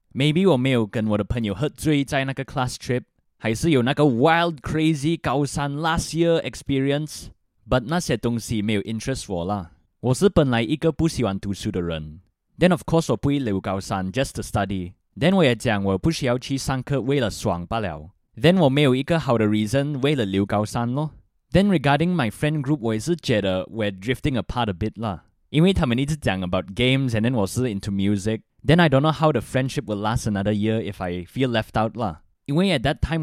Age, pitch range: 20-39, 105-145 Hz